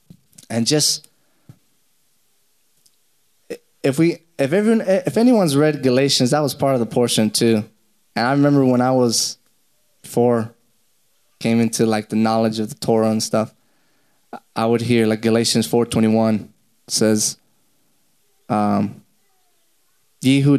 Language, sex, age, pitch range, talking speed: English, male, 20-39, 110-130 Hz, 120 wpm